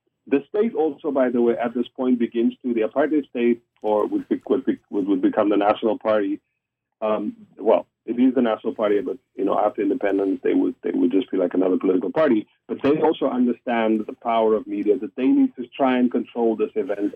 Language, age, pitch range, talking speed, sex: English, 40-59, 110-160 Hz, 220 wpm, male